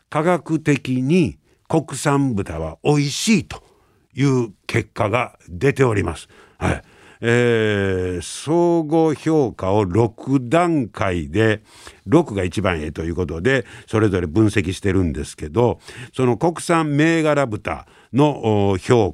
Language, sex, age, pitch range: Japanese, male, 60-79, 100-155 Hz